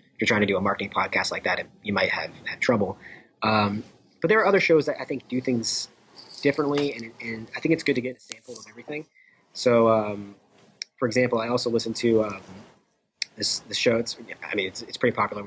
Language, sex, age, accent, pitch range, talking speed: English, male, 30-49, American, 105-120 Hz, 225 wpm